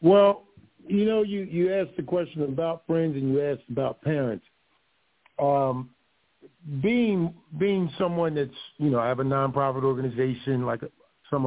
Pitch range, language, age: 140-190 Hz, English, 50-69